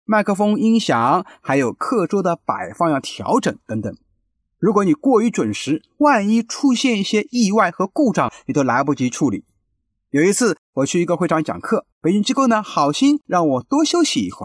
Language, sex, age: Chinese, male, 30-49